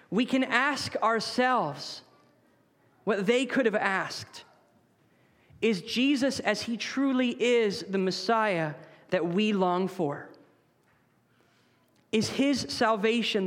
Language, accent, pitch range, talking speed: English, American, 200-270 Hz, 105 wpm